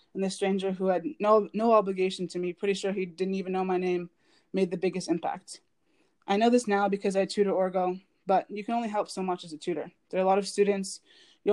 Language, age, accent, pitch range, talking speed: English, 20-39, American, 180-195 Hz, 245 wpm